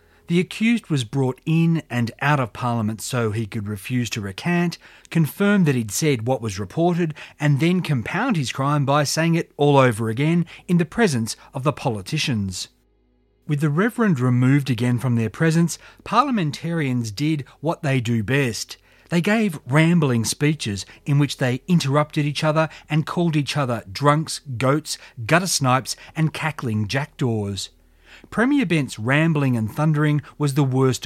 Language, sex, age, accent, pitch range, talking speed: English, male, 40-59, Australian, 120-165 Hz, 155 wpm